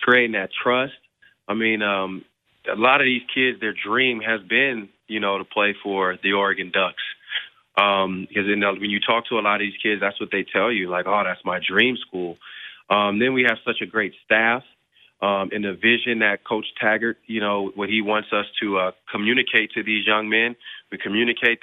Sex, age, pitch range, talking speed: male, 30-49, 100-120 Hz, 210 wpm